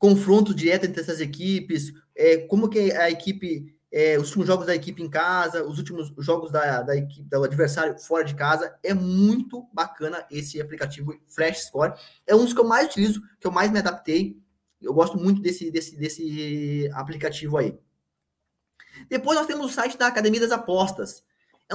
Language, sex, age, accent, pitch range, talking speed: Portuguese, male, 20-39, Brazilian, 150-195 Hz, 180 wpm